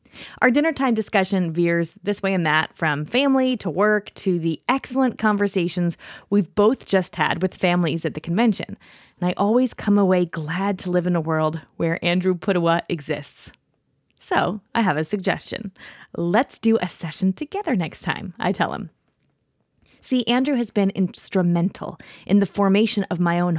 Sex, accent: female, American